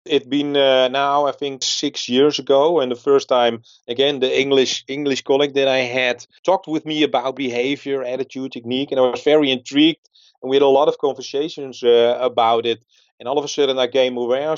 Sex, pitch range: male, 120-140 Hz